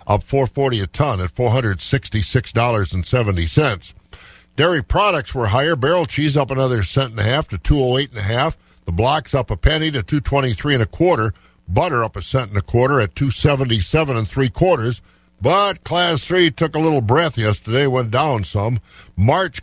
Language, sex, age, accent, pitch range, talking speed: English, male, 50-69, American, 105-145 Hz, 200 wpm